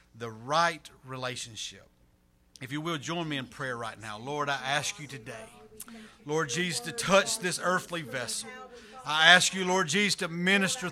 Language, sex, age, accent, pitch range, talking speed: English, male, 50-69, American, 140-190 Hz, 170 wpm